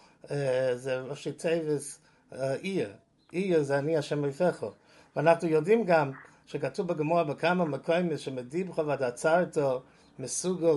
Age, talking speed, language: 50-69, 110 wpm, English